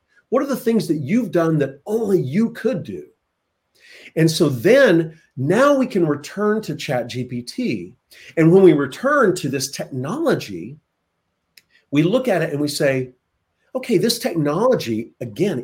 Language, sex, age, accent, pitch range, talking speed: English, male, 40-59, American, 140-195 Hz, 150 wpm